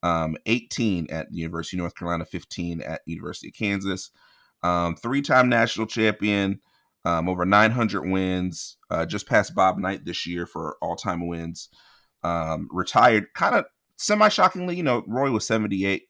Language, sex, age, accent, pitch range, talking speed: English, male, 30-49, American, 85-105 Hz, 155 wpm